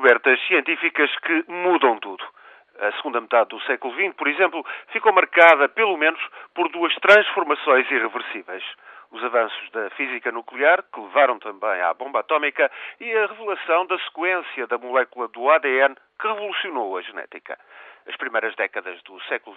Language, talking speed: Portuguese, 155 wpm